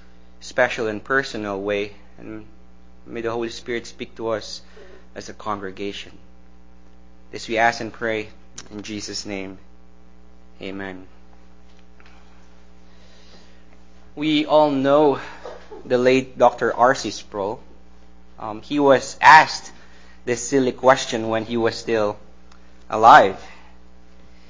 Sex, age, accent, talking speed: male, 20-39, Filipino, 110 wpm